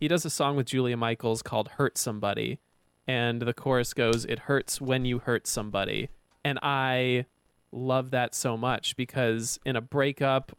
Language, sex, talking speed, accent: English, male, 170 wpm, American